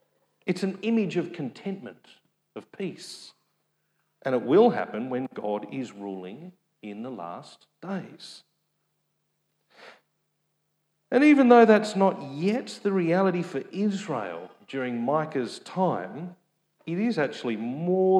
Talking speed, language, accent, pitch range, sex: 120 wpm, English, Australian, 120-195 Hz, male